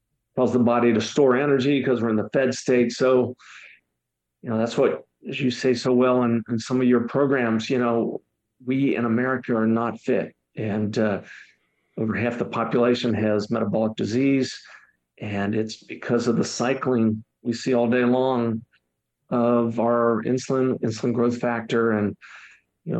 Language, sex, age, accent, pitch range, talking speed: English, male, 50-69, American, 115-135 Hz, 165 wpm